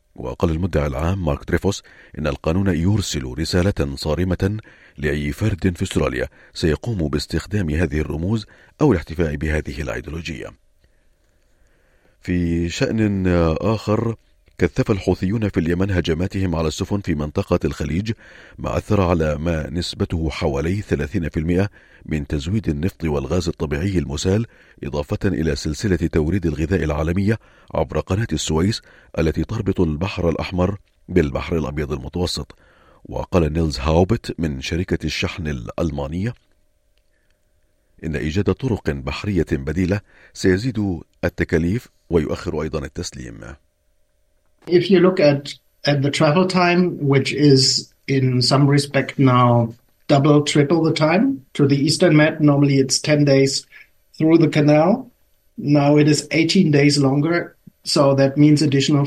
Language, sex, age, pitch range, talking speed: Arabic, male, 40-59, 80-135 Hz, 120 wpm